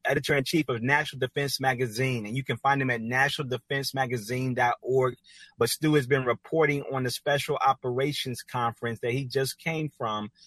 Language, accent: English, American